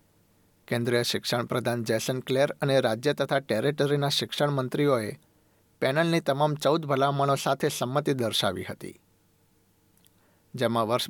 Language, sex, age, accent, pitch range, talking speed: Gujarati, male, 60-79, native, 115-145 Hz, 105 wpm